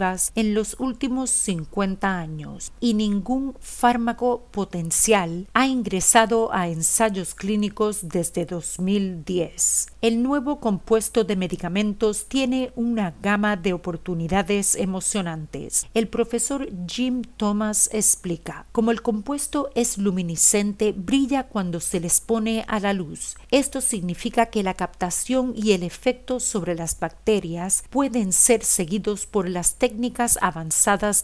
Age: 50-69